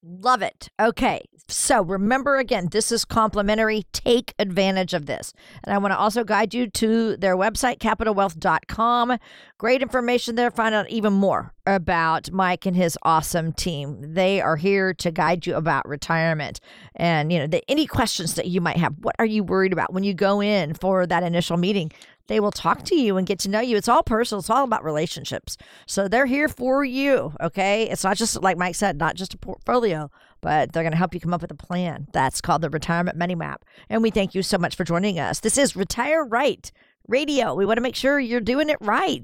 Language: English